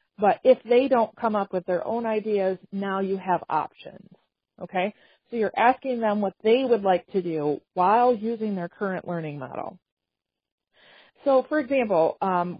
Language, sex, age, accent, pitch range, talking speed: English, female, 40-59, American, 185-240 Hz, 165 wpm